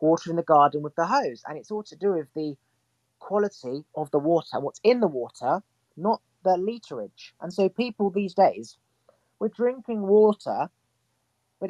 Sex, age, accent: male, 30-49, British